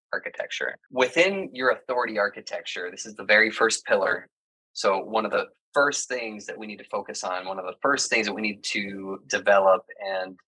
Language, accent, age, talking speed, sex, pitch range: English, American, 20-39, 195 wpm, male, 105-130 Hz